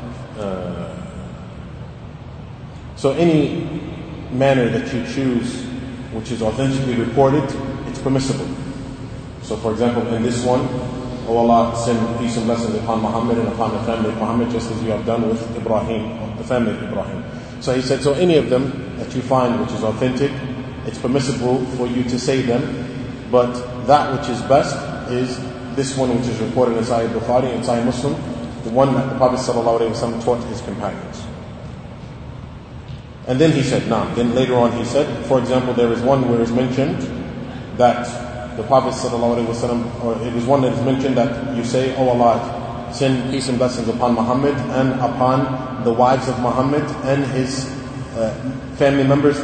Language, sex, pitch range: English, male, 115-130 Hz